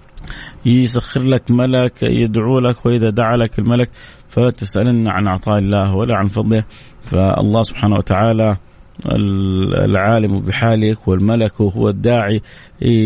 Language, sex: English, male